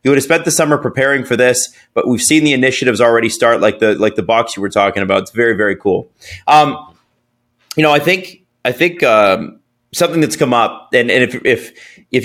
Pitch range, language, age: 115-150 Hz, English, 30-49